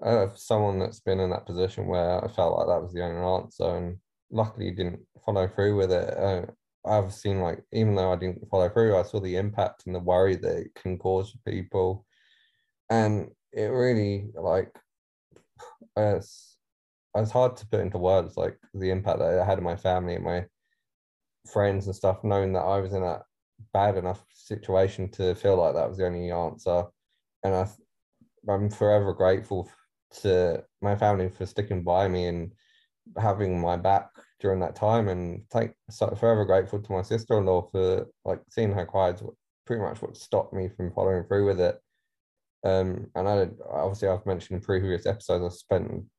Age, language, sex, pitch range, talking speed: 20-39, English, male, 90-105 Hz, 185 wpm